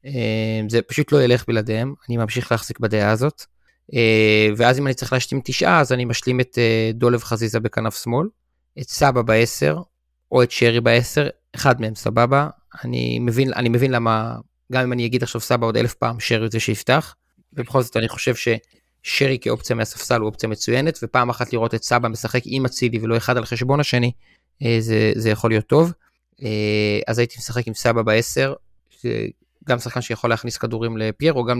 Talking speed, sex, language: 175 wpm, male, Hebrew